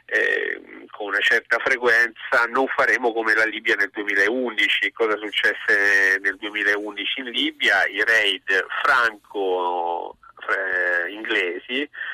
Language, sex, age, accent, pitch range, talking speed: Italian, male, 40-59, native, 100-140 Hz, 105 wpm